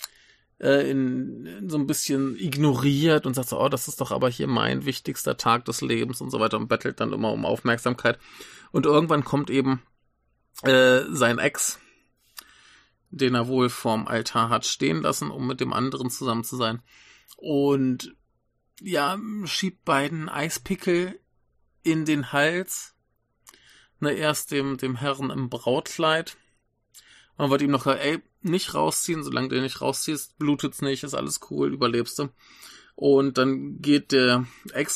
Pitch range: 120-150 Hz